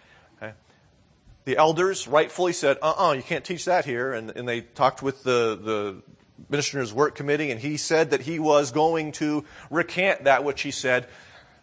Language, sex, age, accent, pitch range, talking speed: English, male, 40-59, American, 110-150 Hz, 180 wpm